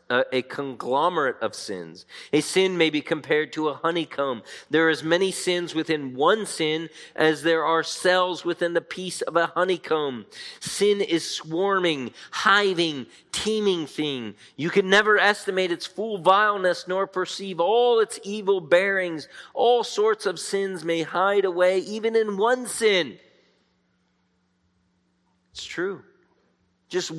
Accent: American